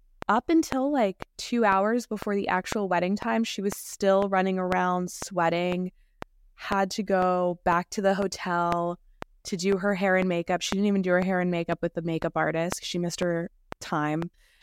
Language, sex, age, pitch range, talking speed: English, female, 20-39, 175-215 Hz, 185 wpm